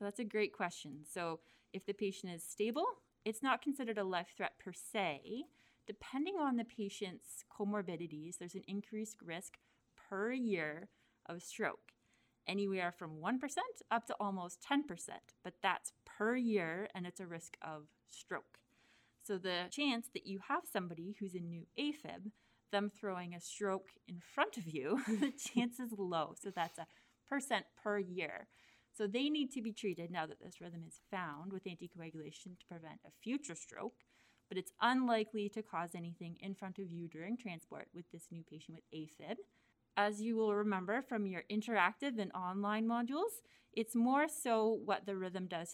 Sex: female